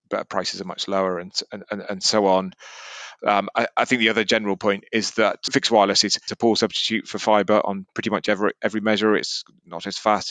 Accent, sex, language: British, male, English